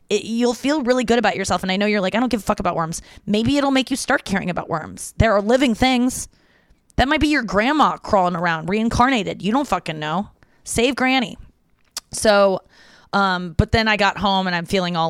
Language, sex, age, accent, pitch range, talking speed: English, female, 20-39, American, 170-215 Hz, 220 wpm